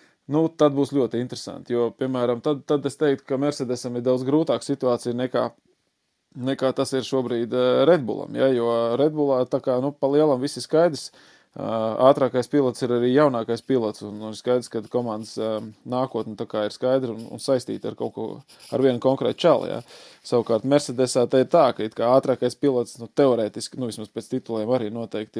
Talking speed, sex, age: 185 wpm, male, 20-39